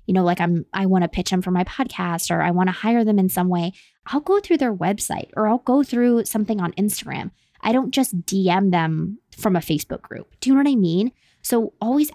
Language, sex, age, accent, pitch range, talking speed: English, female, 20-39, American, 180-220 Hz, 245 wpm